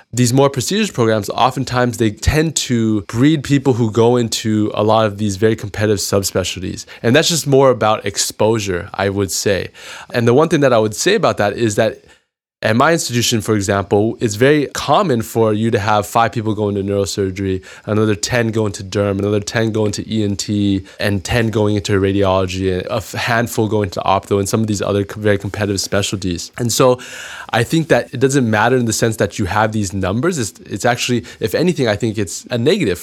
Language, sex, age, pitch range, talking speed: English, male, 20-39, 105-125 Hz, 205 wpm